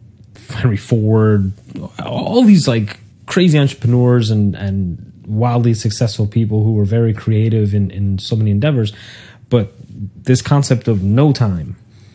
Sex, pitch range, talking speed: male, 105-125 Hz, 135 wpm